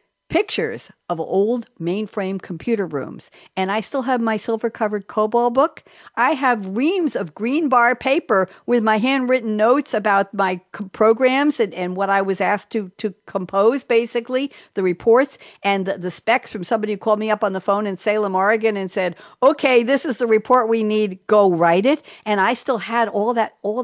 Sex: female